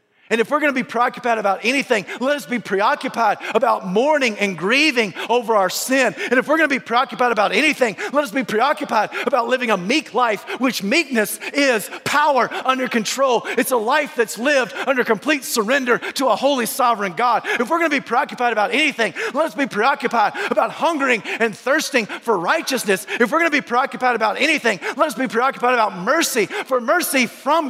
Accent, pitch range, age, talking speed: American, 240-305 Hz, 40-59, 200 wpm